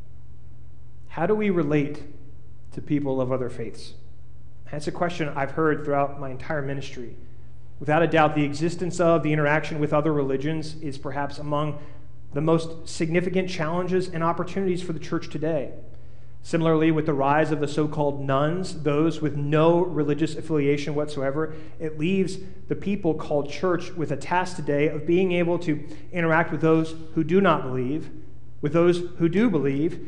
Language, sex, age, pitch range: English, male, 30-49, 145-180 Hz